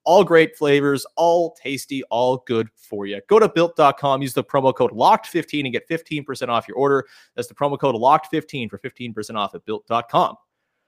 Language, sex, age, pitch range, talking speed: English, male, 30-49, 125-170 Hz, 180 wpm